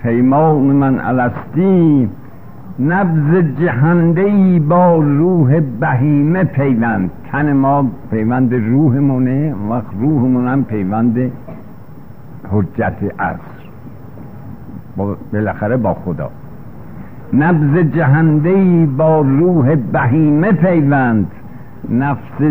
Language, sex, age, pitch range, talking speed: Persian, male, 60-79, 120-160 Hz, 75 wpm